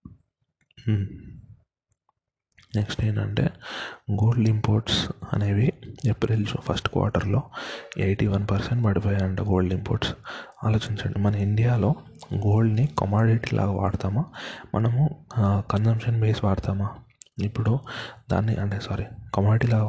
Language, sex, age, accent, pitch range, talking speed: Telugu, male, 20-39, native, 100-115 Hz, 95 wpm